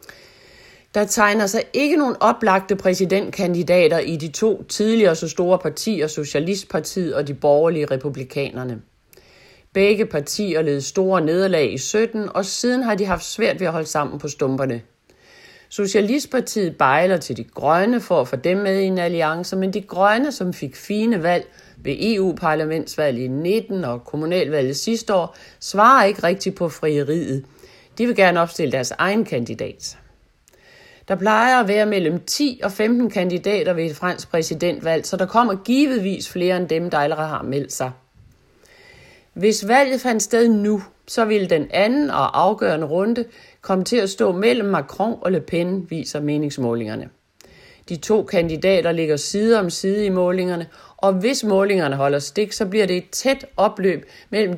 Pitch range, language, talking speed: 155-215 Hz, Danish, 160 wpm